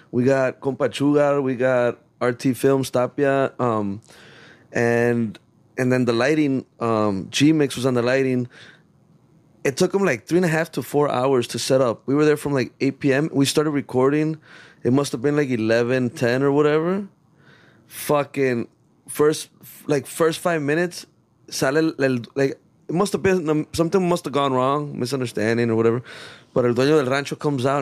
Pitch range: 125-150 Hz